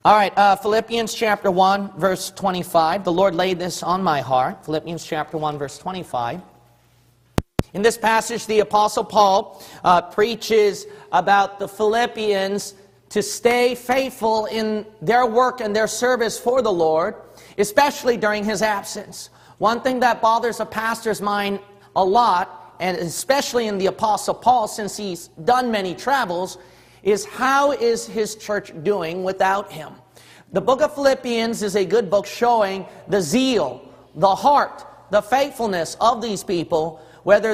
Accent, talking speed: American, 150 wpm